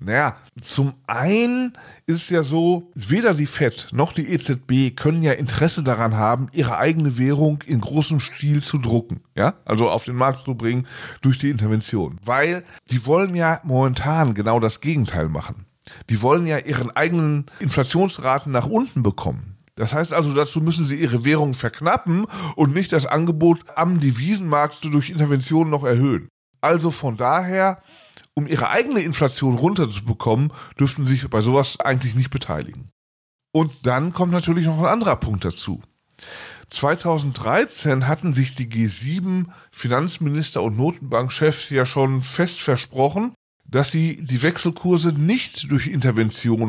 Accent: German